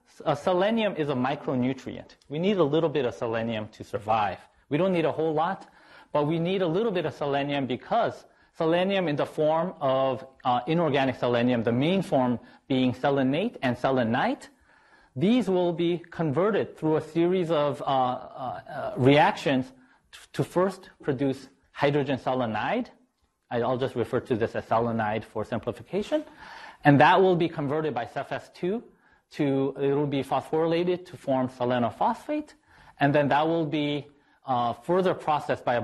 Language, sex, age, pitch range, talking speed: English, male, 40-59, 130-165 Hz, 155 wpm